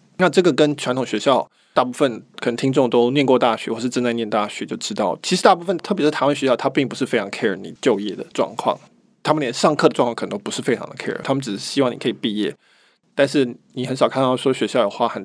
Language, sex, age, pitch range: Chinese, male, 20-39, 120-150 Hz